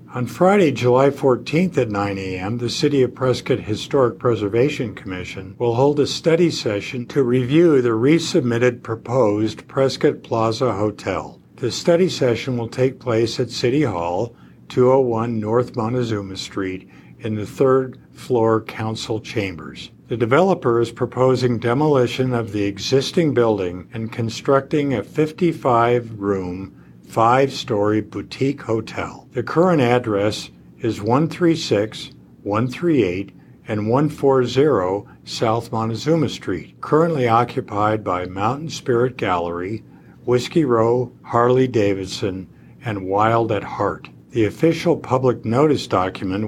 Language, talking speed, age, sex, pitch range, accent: English, 115 wpm, 50-69, male, 105-135 Hz, American